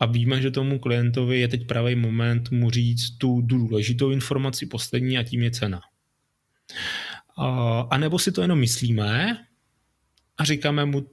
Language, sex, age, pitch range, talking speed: Slovak, male, 30-49, 120-145 Hz, 150 wpm